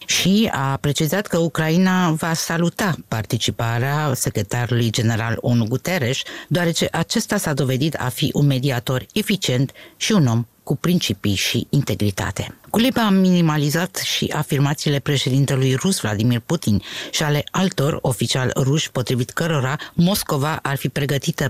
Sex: female